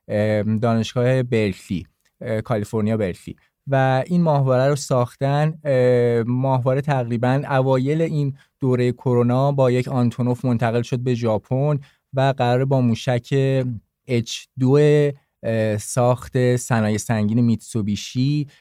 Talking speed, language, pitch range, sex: 105 wpm, Persian, 110-135 Hz, male